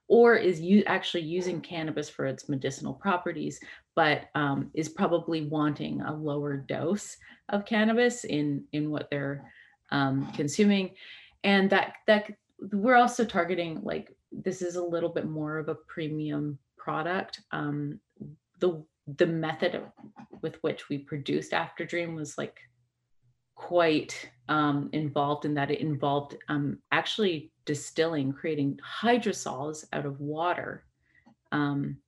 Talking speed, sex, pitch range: 135 wpm, female, 145-175 Hz